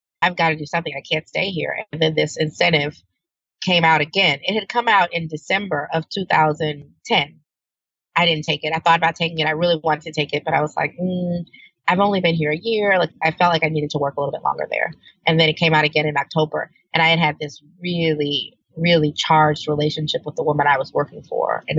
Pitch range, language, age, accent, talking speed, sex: 150-170 Hz, English, 30-49, American, 240 wpm, female